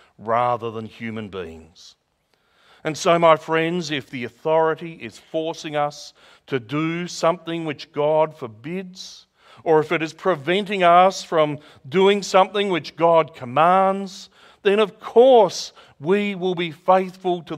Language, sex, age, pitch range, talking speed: English, male, 40-59, 135-185 Hz, 135 wpm